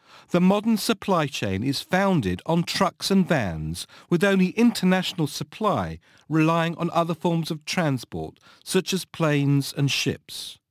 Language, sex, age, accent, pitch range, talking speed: English, male, 50-69, British, 130-195 Hz, 140 wpm